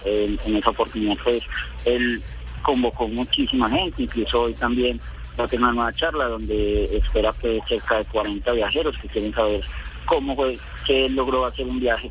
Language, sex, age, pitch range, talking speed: Spanish, male, 40-59, 105-125 Hz, 190 wpm